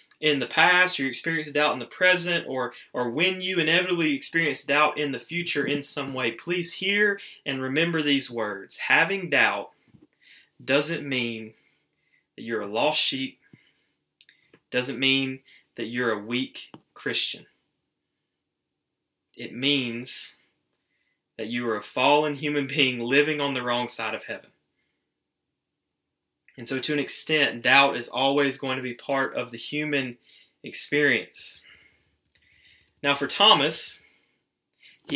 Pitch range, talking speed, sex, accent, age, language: 120-150 Hz, 140 wpm, male, American, 20-39, English